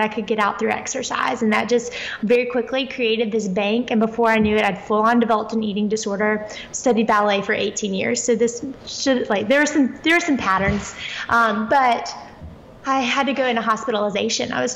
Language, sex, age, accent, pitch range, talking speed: English, female, 20-39, American, 215-240 Hz, 205 wpm